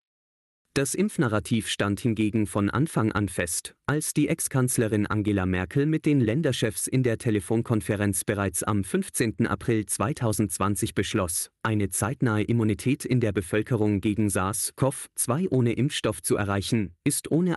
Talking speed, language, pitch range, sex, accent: 135 wpm, German, 100-125 Hz, male, German